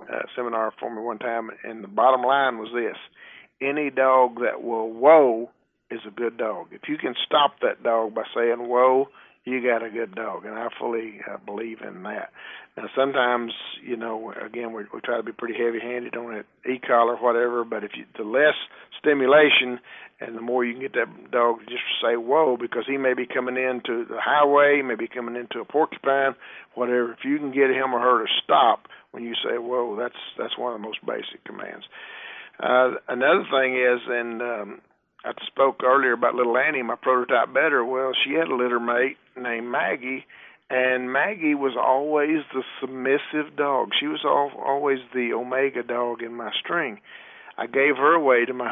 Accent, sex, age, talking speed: American, male, 50-69, 190 wpm